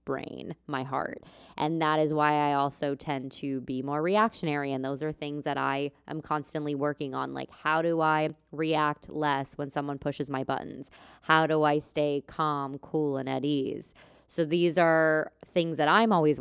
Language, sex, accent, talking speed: English, female, American, 185 wpm